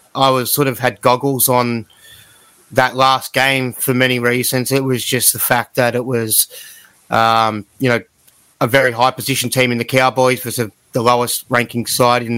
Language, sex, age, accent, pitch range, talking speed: English, male, 30-49, Australian, 120-140 Hz, 190 wpm